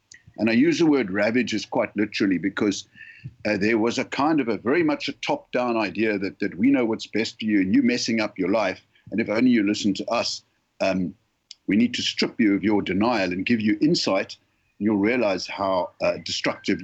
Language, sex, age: English, male, 60-79